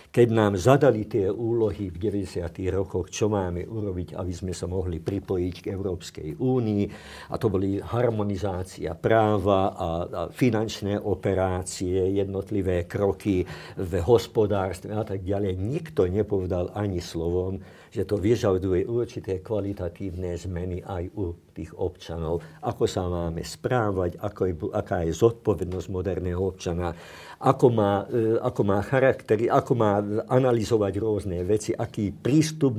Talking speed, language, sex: 125 wpm, Slovak, male